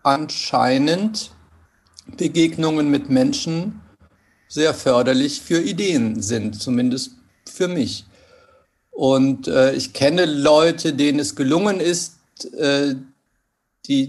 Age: 40-59